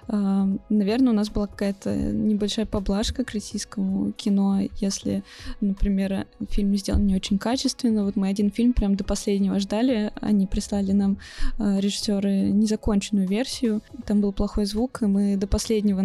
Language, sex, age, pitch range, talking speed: Russian, female, 20-39, 195-220 Hz, 145 wpm